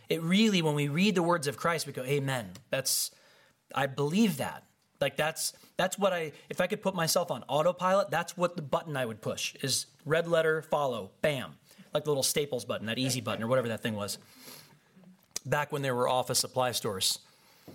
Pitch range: 130-175 Hz